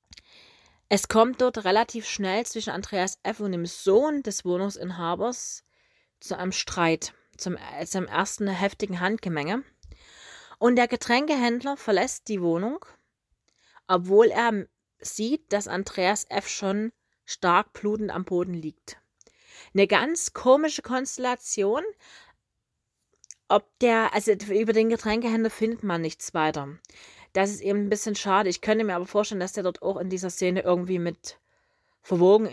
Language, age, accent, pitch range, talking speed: German, 30-49, German, 180-225 Hz, 135 wpm